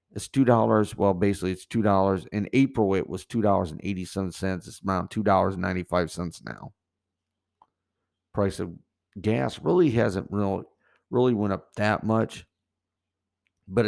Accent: American